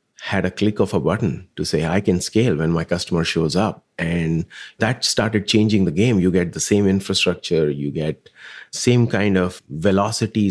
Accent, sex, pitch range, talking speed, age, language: Indian, male, 90-105 Hz, 190 wpm, 30-49, English